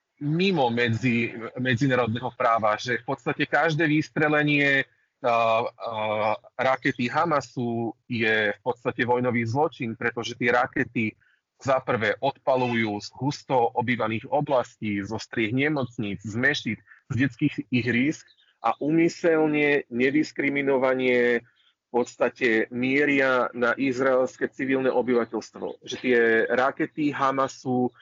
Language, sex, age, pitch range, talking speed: Slovak, male, 30-49, 115-140 Hz, 105 wpm